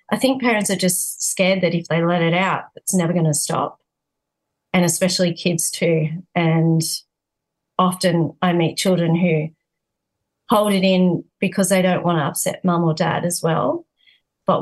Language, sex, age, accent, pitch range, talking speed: English, female, 30-49, Australian, 170-195 Hz, 170 wpm